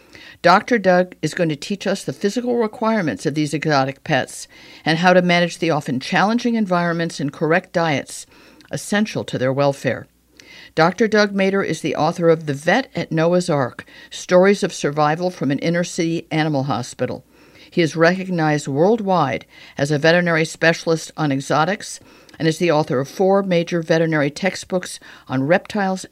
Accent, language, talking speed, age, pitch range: American, English, 165 wpm, 50-69, 145-185 Hz